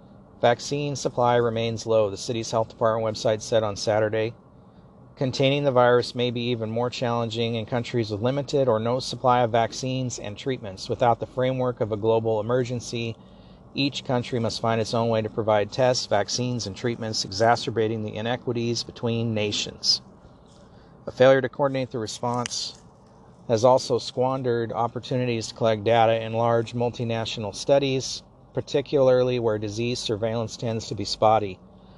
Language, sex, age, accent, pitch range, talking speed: English, male, 40-59, American, 110-125 Hz, 150 wpm